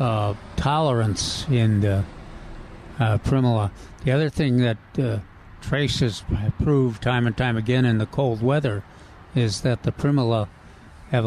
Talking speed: 140 wpm